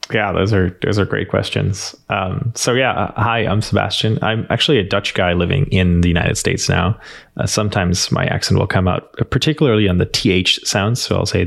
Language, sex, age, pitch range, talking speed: English, male, 20-39, 90-110 Hz, 205 wpm